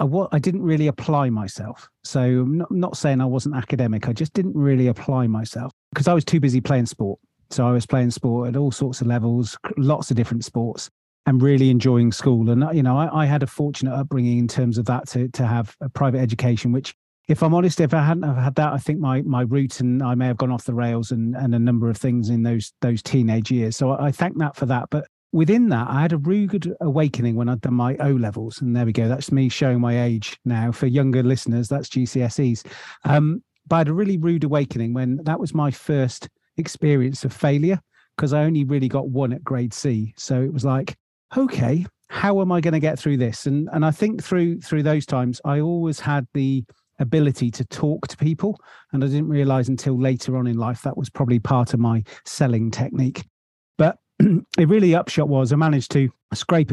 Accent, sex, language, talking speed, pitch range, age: British, male, English, 225 wpm, 120-150 Hz, 30-49